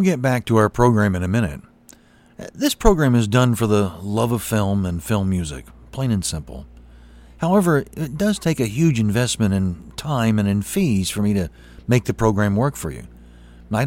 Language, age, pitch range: English, 40-59, 90-135 Hz